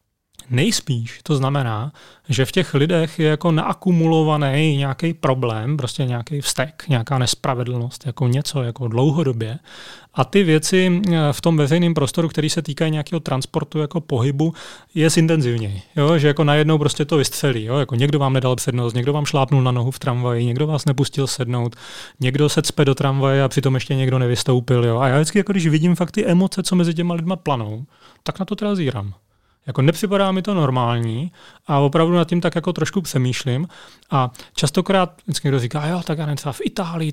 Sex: male